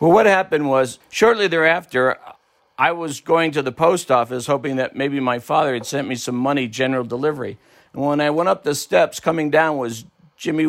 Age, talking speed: 60-79, 200 wpm